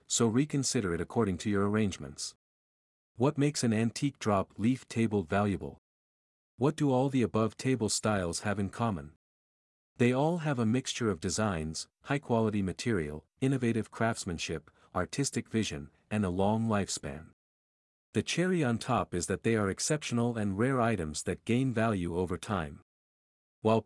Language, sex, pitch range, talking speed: English, male, 90-125 Hz, 155 wpm